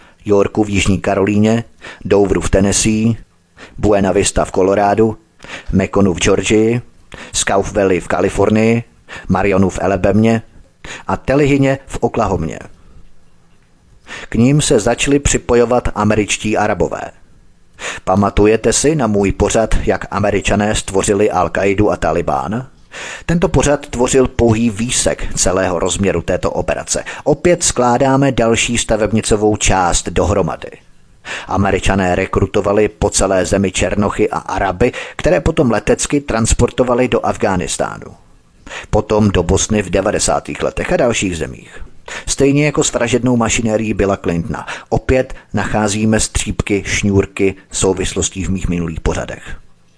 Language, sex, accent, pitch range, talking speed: Czech, male, native, 95-115 Hz, 120 wpm